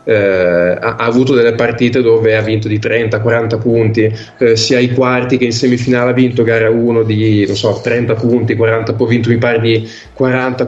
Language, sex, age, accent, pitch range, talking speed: Italian, male, 20-39, native, 110-125 Hz, 195 wpm